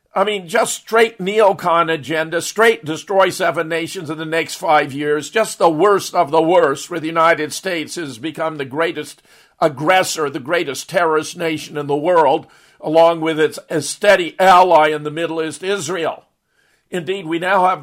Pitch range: 155-185 Hz